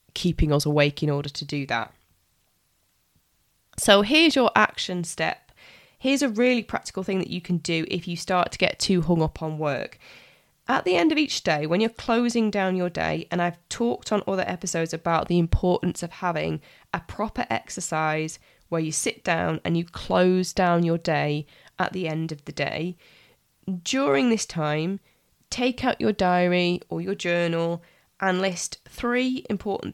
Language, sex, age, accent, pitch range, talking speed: English, female, 20-39, British, 160-200 Hz, 175 wpm